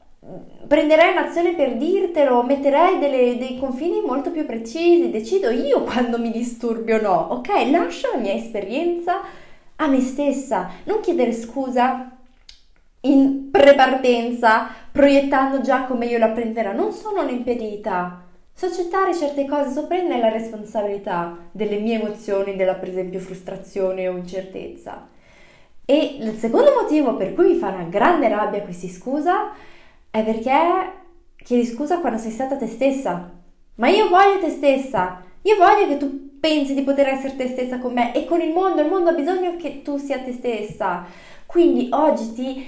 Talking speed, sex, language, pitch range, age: 155 wpm, female, Italian, 225-315 Hz, 20-39